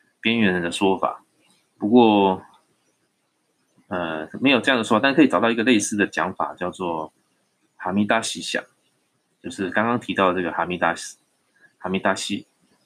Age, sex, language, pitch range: 20-39, male, Chinese, 95-130 Hz